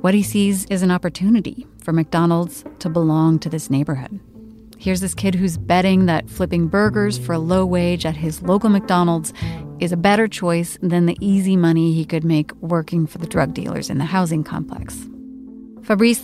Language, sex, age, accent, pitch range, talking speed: English, female, 30-49, American, 150-190 Hz, 185 wpm